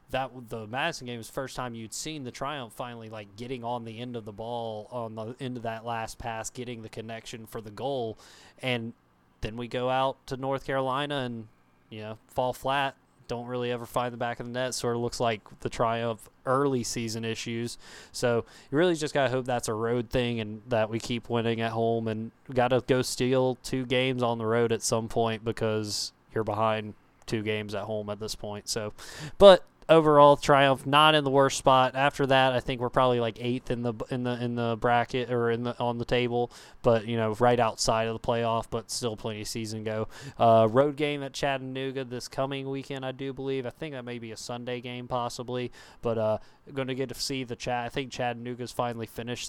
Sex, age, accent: male, 20-39, American